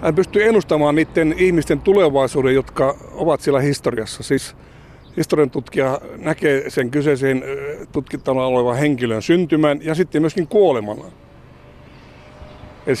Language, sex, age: Finnish, male, 60-79